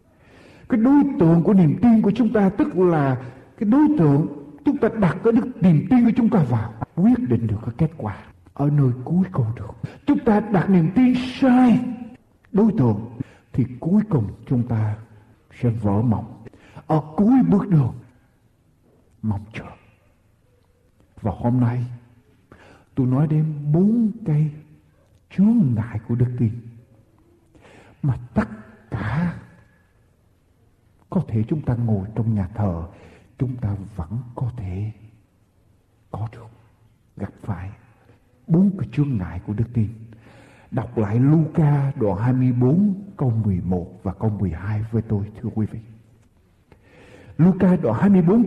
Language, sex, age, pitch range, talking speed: Vietnamese, male, 60-79, 110-165 Hz, 140 wpm